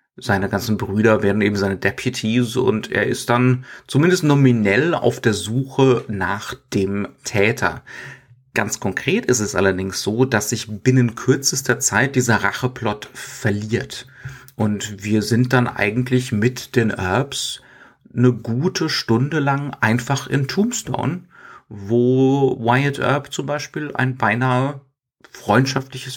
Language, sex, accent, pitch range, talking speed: German, male, German, 110-130 Hz, 130 wpm